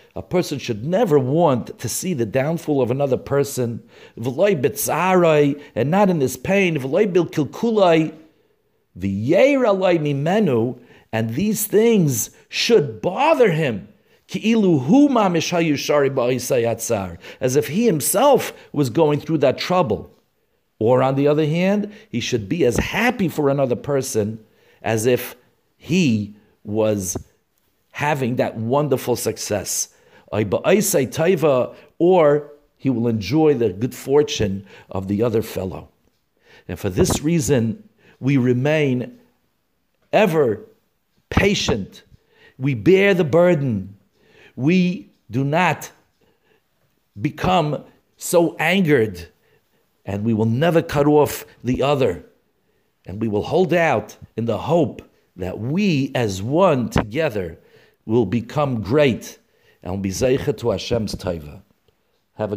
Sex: male